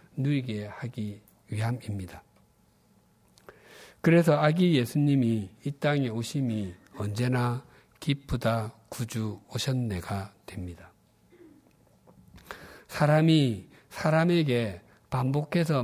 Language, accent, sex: Korean, native, male